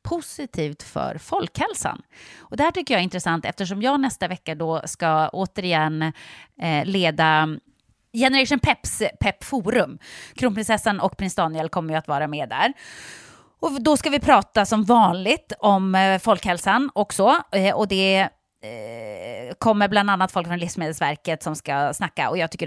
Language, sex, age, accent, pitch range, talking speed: English, female, 30-49, Swedish, 160-220 Hz, 145 wpm